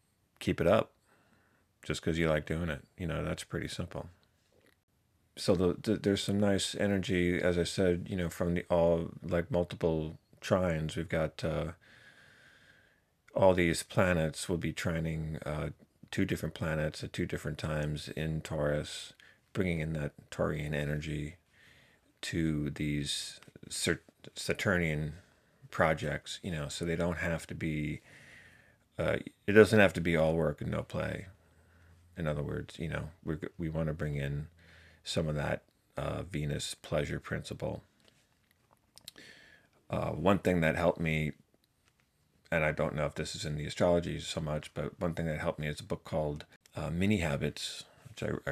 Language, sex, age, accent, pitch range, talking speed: English, male, 30-49, American, 75-85 Hz, 160 wpm